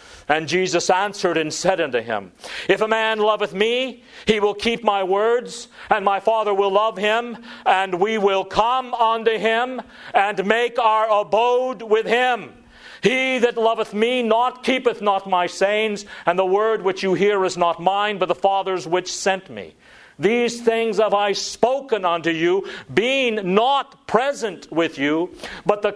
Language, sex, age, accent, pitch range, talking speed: English, male, 50-69, American, 180-230 Hz, 170 wpm